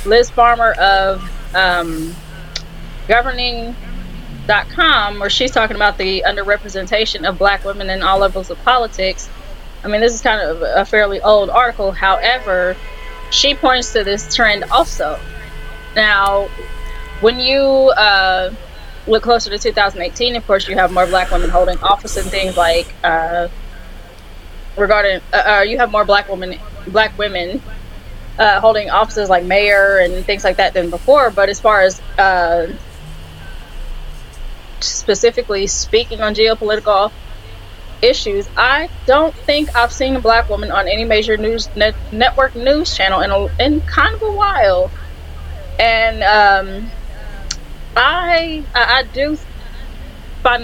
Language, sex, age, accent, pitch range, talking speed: English, female, 20-39, American, 180-230 Hz, 140 wpm